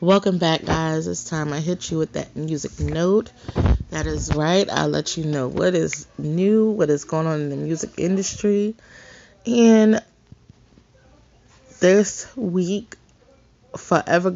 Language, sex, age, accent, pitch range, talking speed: English, female, 20-39, American, 155-195 Hz, 140 wpm